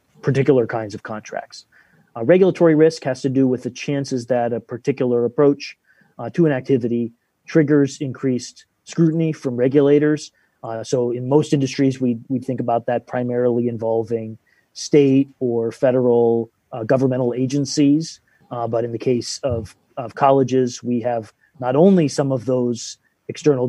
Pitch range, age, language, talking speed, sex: 115-140 Hz, 30-49, English, 150 wpm, male